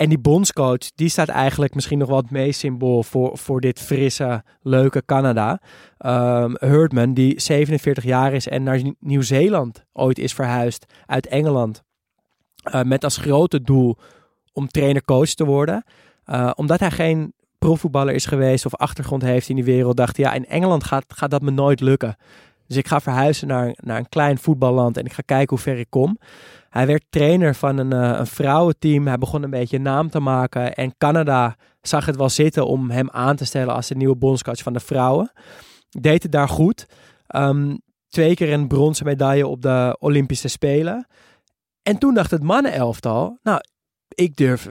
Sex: male